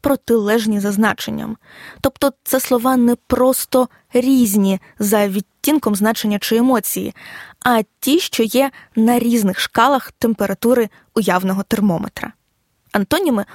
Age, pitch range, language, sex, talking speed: 20-39, 205-255 Hz, Ukrainian, female, 110 wpm